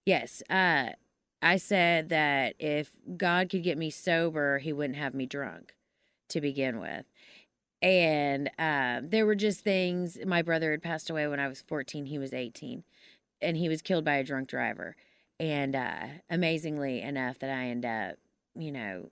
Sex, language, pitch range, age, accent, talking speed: female, English, 145-200 Hz, 30-49, American, 175 wpm